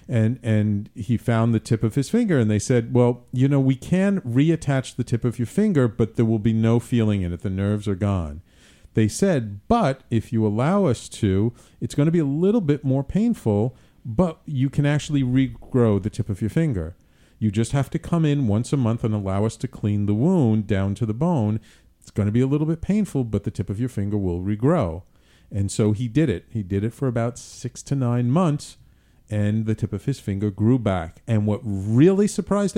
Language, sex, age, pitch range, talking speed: English, male, 50-69, 105-150 Hz, 225 wpm